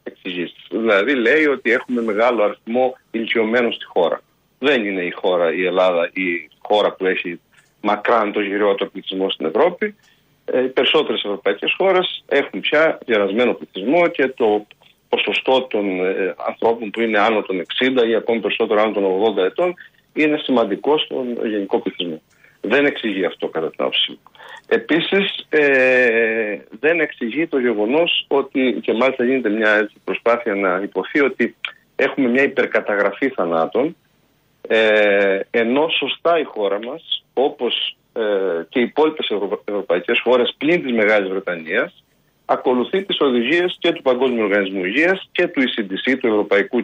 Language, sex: Greek, male